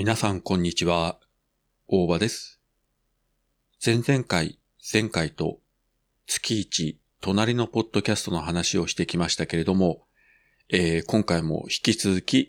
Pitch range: 85-110 Hz